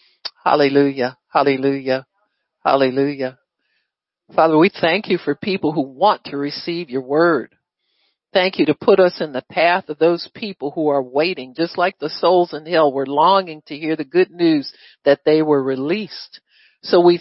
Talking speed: 165 wpm